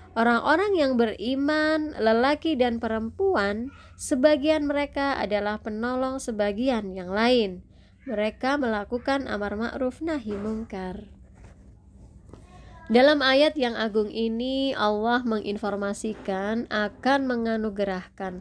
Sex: female